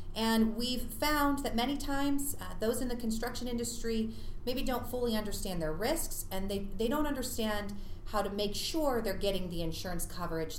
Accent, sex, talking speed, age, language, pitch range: American, female, 180 wpm, 30-49, English, 160-235 Hz